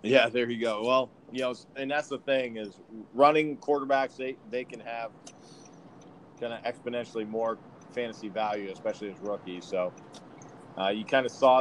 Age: 30-49